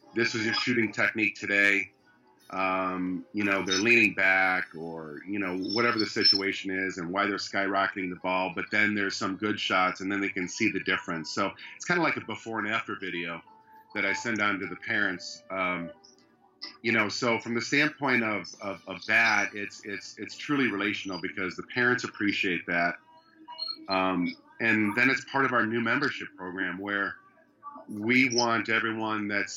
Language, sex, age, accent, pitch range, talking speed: English, male, 40-59, American, 95-115 Hz, 185 wpm